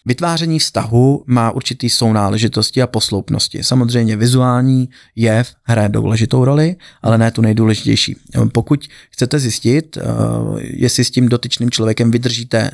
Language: Slovak